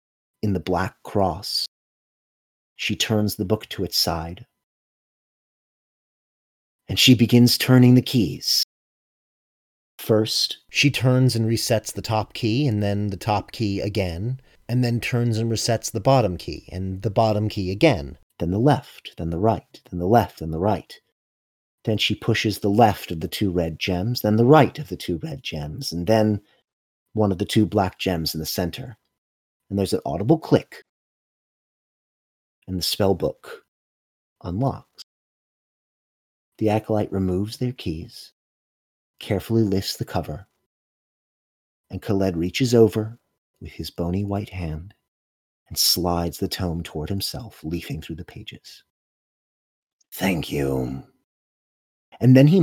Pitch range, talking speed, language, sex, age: 90-115 Hz, 145 wpm, English, male, 30-49